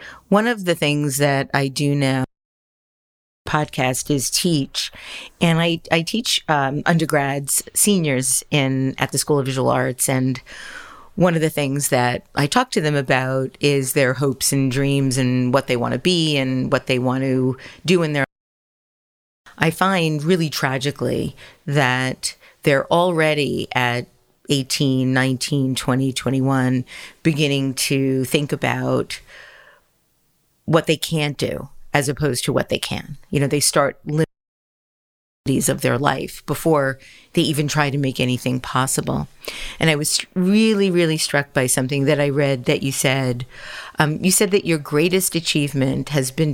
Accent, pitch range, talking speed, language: American, 130-155 Hz, 160 wpm, English